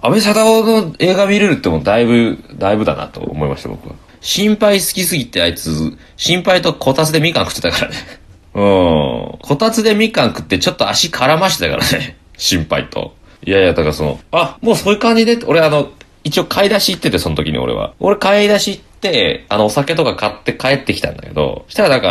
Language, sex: Japanese, male